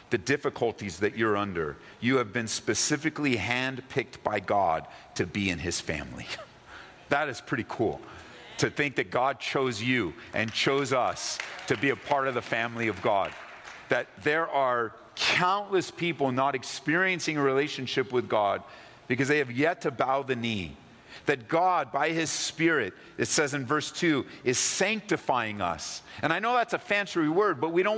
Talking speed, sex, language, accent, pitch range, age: 175 wpm, male, English, American, 135-205 Hz, 50-69